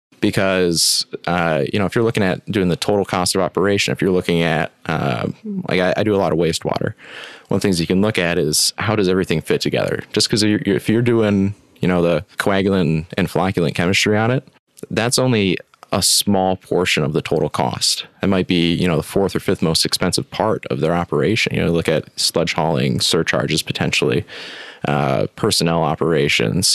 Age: 20-39